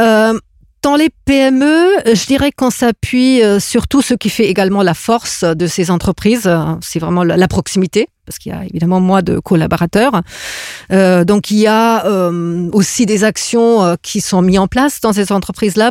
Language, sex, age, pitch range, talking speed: French, female, 40-59, 170-220 Hz, 180 wpm